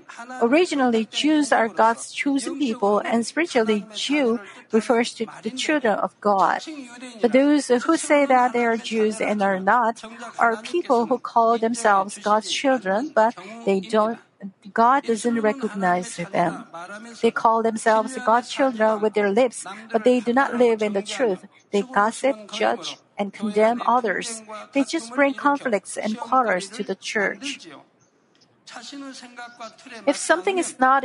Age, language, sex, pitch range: 50-69, Korean, female, 215-260 Hz